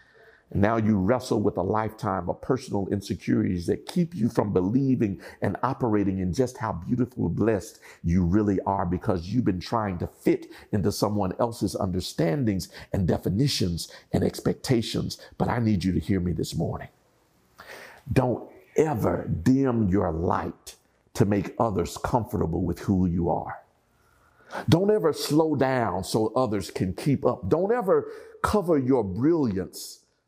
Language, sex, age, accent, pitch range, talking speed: English, male, 50-69, American, 95-135 Hz, 150 wpm